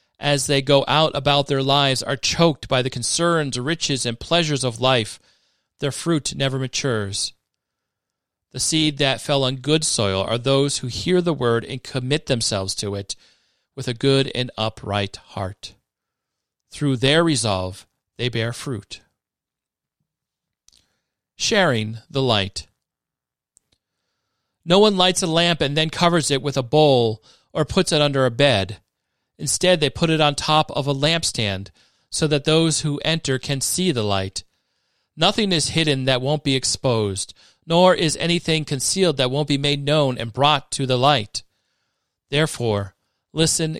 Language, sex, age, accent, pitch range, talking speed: English, male, 40-59, American, 115-155 Hz, 155 wpm